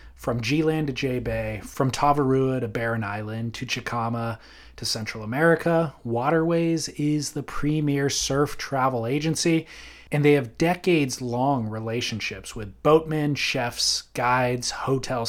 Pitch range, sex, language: 115-145 Hz, male, English